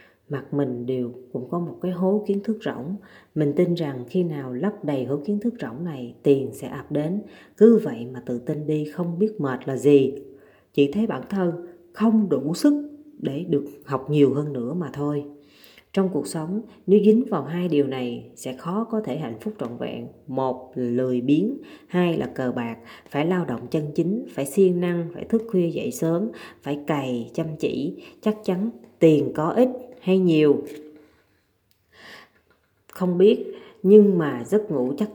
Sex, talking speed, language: female, 185 wpm, Vietnamese